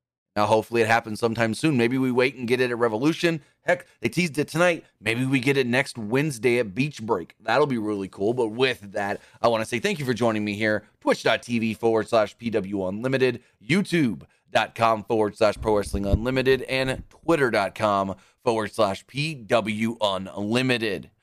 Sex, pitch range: male, 110-130 Hz